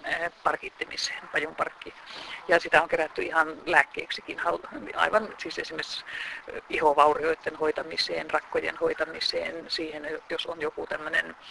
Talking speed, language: 105 wpm, Finnish